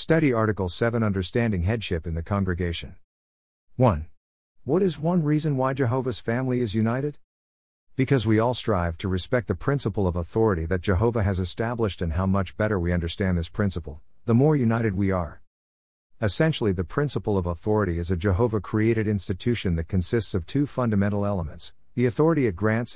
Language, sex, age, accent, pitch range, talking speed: English, male, 50-69, American, 90-120 Hz, 165 wpm